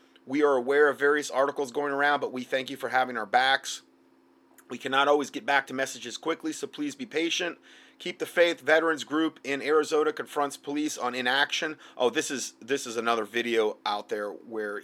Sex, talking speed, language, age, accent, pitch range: male, 200 wpm, English, 30-49, American, 120-155 Hz